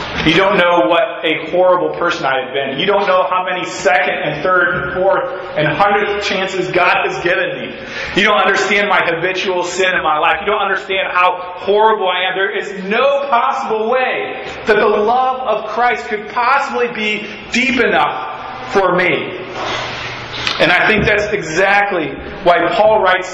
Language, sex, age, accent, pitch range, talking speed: English, male, 30-49, American, 170-210 Hz, 175 wpm